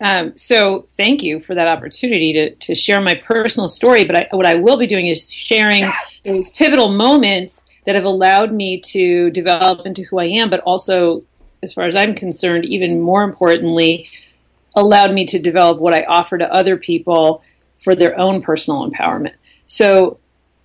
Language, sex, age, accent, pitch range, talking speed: English, female, 40-59, American, 170-200 Hz, 175 wpm